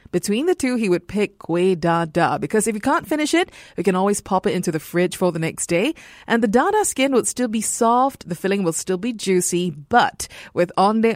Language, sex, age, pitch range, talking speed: English, female, 30-49, 175-245 Hz, 230 wpm